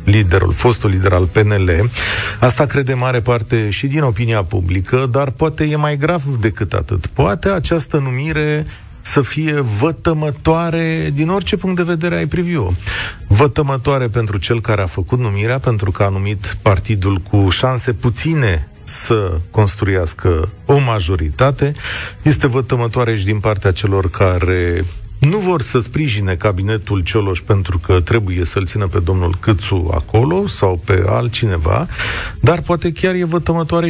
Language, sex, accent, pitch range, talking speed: Romanian, male, native, 100-150 Hz, 145 wpm